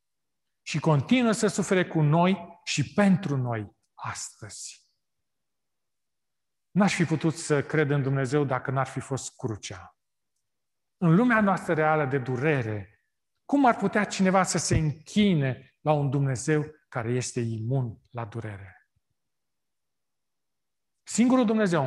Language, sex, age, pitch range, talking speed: Romanian, male, 40-59, 120-165 Hz, 125 wpm